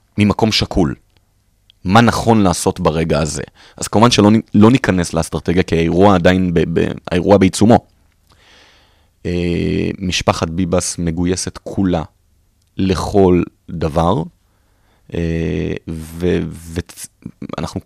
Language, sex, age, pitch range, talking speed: Hebrew, male, 30-49, 90-105 Hz, 95 wpm